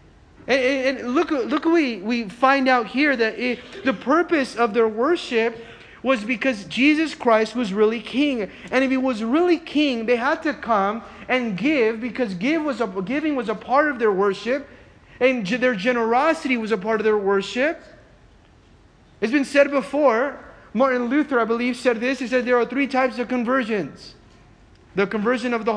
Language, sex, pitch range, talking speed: English, male, 205-255 Hz, 180 wpm